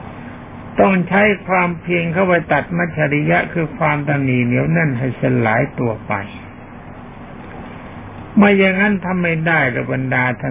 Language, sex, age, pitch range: Thai, male, 60-79, 125-175 Hz